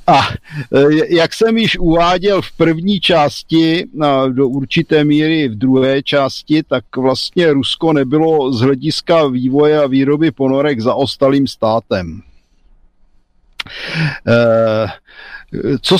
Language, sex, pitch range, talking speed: Slovak, male, 130-160 Hz, 105 wpm